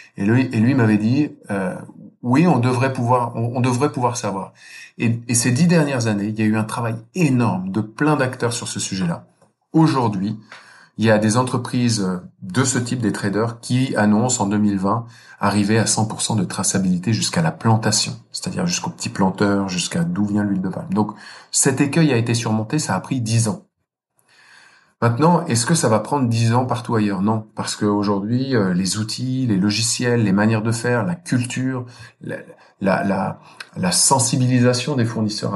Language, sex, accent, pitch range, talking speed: French, male, French, 105-130 Hz, 185 wpm